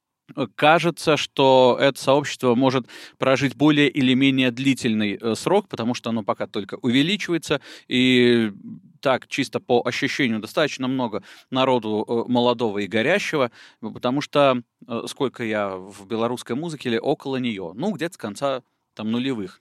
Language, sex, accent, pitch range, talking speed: Russian, male, native, 110-135 Hz, 135 wpm